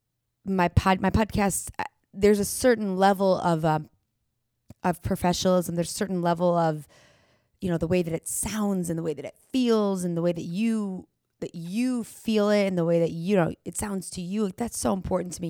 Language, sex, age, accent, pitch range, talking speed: English, female, 20-39, American, 170-205 Hz, 210 wpm